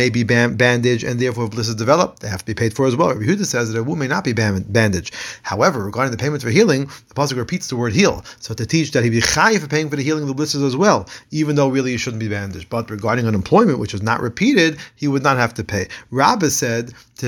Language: English